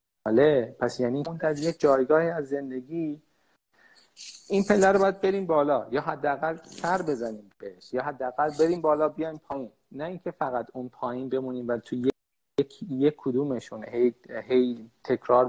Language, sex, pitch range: Persian, male, 120-155 Hz